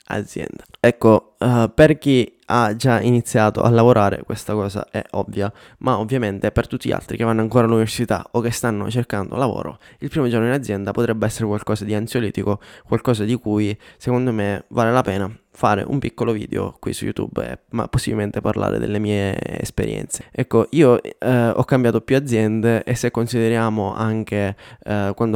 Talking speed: 165 wpm